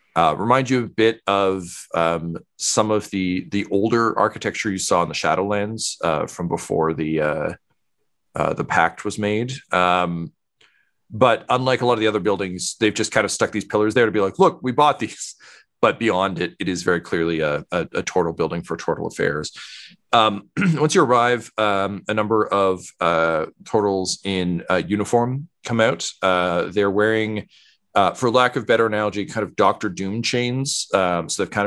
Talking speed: 190 wpm